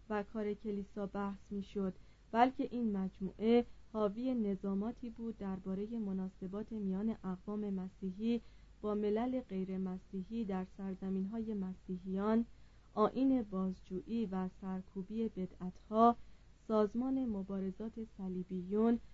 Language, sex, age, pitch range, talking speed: Persian, female, 30-49, 190-230 Hz, 95 wpm